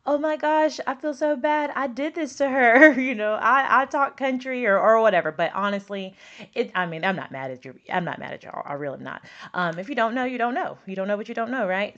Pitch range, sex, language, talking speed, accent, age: 175-250 Hz, female, English, 280 wpm, American, 20-39